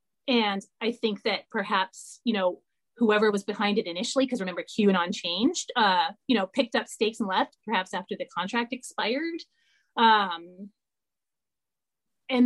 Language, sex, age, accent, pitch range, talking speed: English, female, 30-49, American, 195-245 Hz, 150 wpm